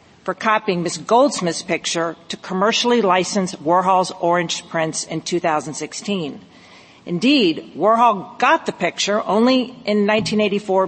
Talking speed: 115 wpm